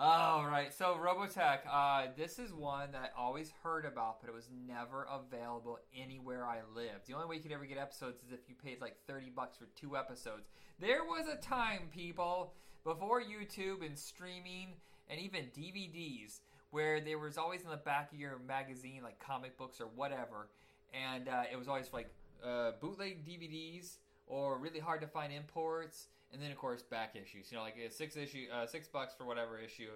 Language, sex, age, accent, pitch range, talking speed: English, male, 20-39, American, 125-160 Hz, 195 wpm